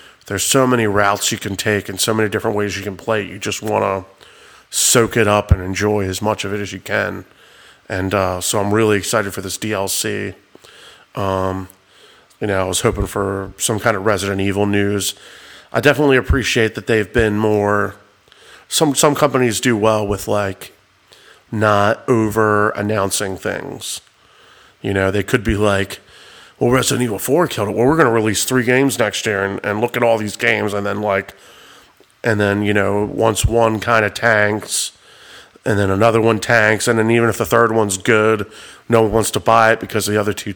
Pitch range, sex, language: 100-115 Hz, male, English